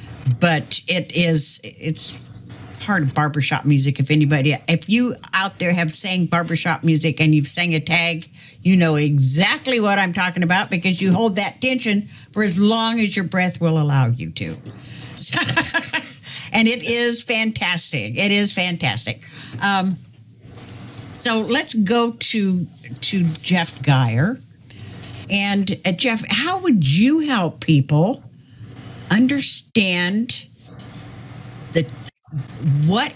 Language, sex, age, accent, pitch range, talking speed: English, female, 60-79, American, 145-195 Hz, 130 wpm